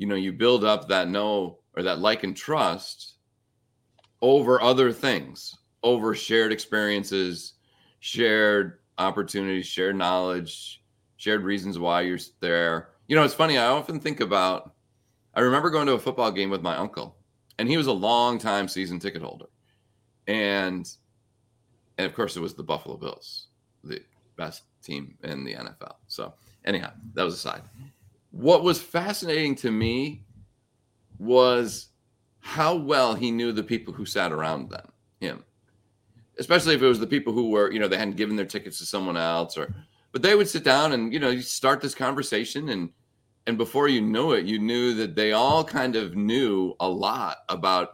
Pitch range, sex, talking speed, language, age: 100-125 Hz, male, 175 wpm, English, 30-49